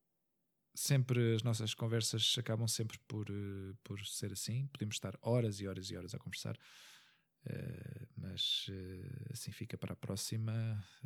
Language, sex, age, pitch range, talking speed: Portuguese, male, 20-39, 100-125 Hz, 135 wpm